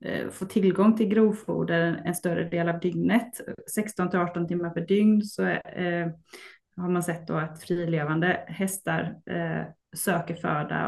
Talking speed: 145 wpm